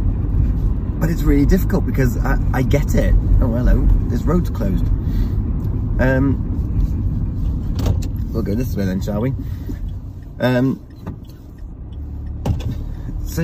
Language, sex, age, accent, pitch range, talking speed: English, male, 20-39, British, 95-120 Hz, 105 wpm